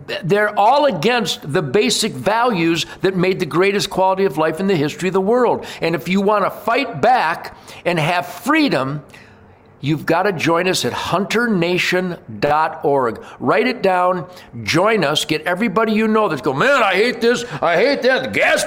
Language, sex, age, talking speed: English, male, 50-69, 170 wpm